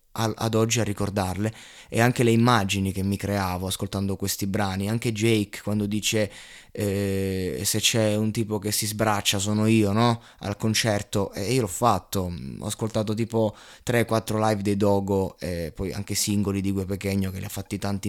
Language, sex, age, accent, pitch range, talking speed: Italian, male, 20-39, native, 95-110 Hz, 180 wpm